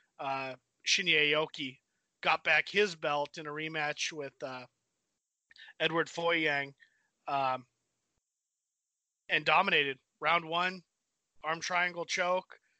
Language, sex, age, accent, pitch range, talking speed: English, male, 30-49, American, 145-170 Hz, 105 wpm